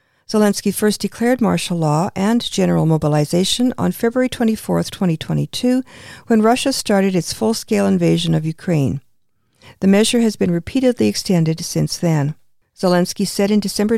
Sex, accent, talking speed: female, American, 135 wpm